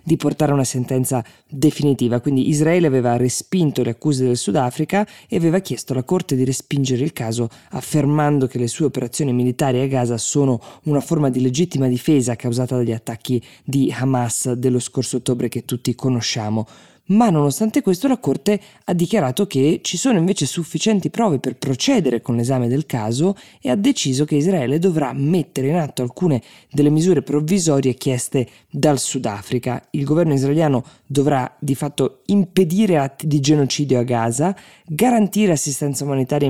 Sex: female